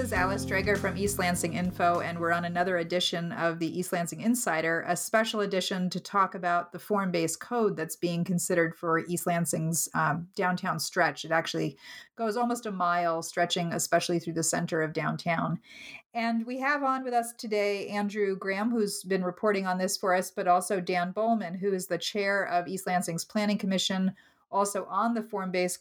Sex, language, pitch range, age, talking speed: female, English, 175-210 Hz, 30-49, 190 wpm